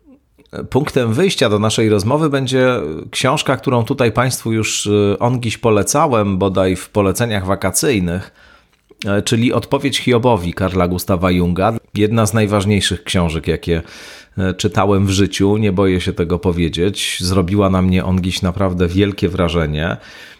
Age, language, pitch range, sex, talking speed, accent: 40-59, Polish, 90-110 Hz, male, 125 wpm, native